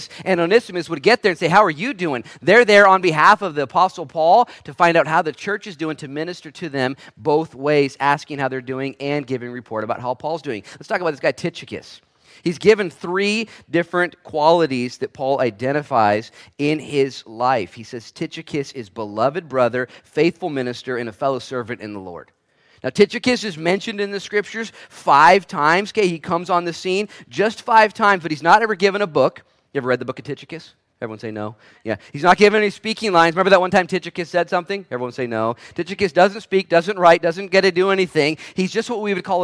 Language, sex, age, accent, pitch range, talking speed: English, male, 40-59, American, 140-195 Hz, 220 wpm